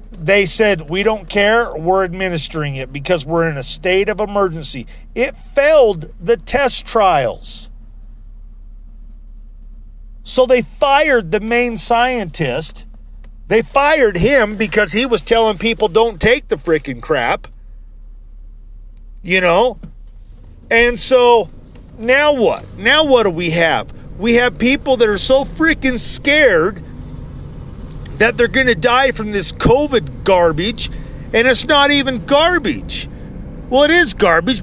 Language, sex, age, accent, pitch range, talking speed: English, male, 40-59, American, 175-270 Hz, 130 wpm